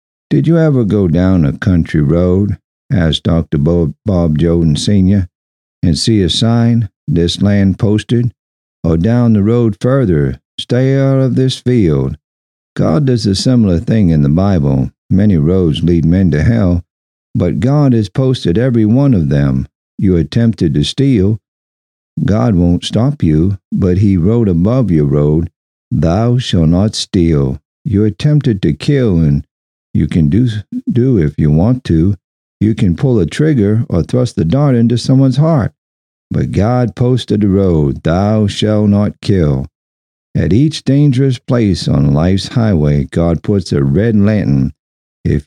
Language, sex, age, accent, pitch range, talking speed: English, male, 50-69, American, 75-115 Hz, 155 wpm